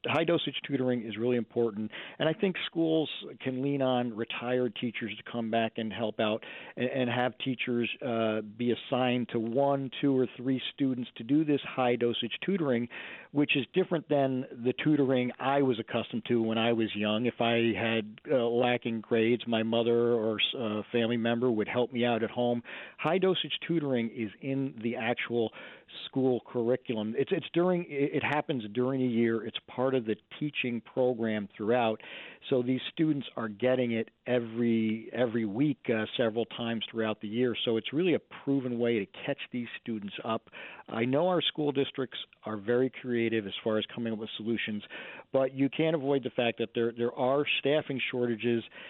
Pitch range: 115-130 Hz